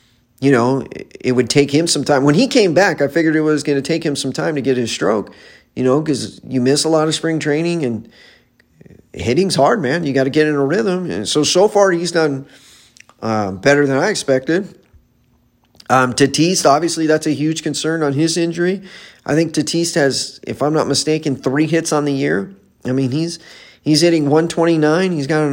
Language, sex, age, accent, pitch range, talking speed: English, male, 40-59, American, 130-160 Hz, 205 wpm